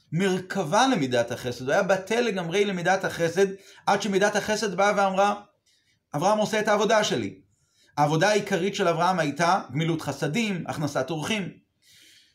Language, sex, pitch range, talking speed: Hebrew, male, 160-210 Hz, 135 wpm